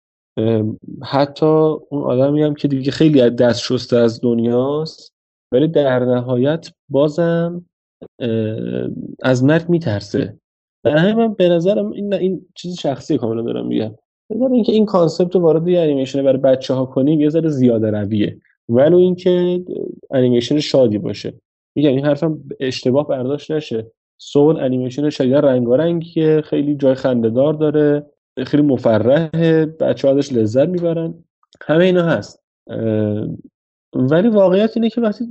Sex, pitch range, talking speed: male, 125-170 Hz, 135 wpm